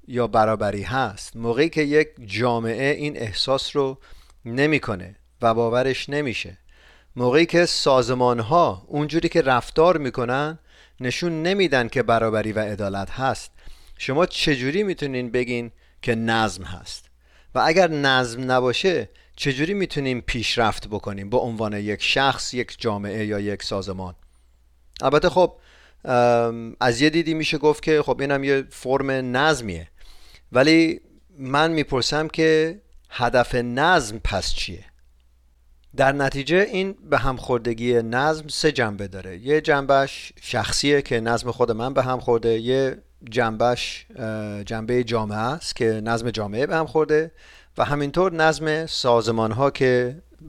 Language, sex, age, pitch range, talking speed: Persian, male, 40-59, 110-145 Hz, 130 wpm